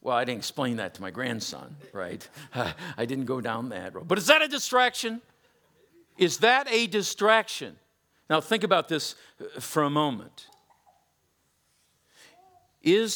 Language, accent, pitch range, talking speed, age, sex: English, American, 150-240 Hz, 145 wpm, 50-69, male